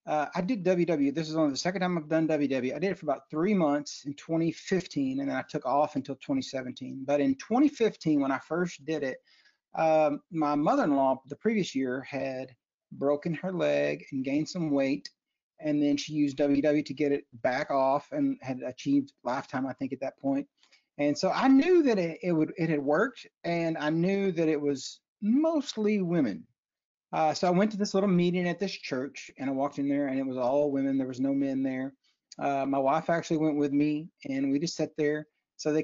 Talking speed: 215 wpm